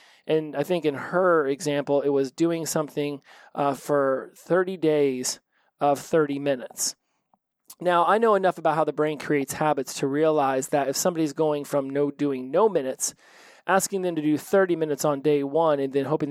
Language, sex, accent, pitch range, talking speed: English, male, American, 140-165 Hz, 185 wpm